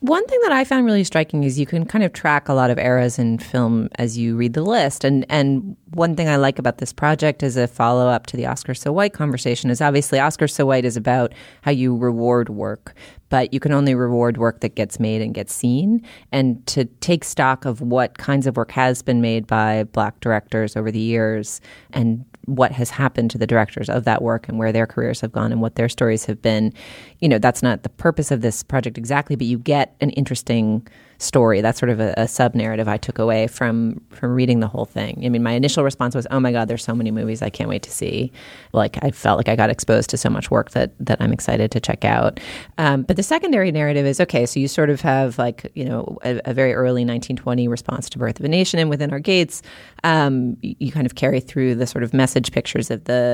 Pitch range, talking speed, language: 115-140 Hz, 245 wpm, English